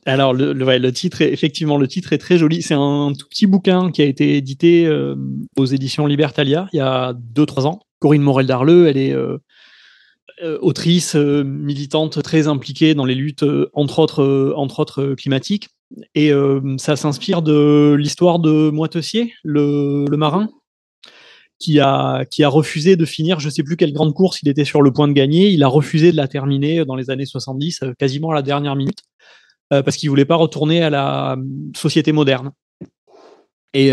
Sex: male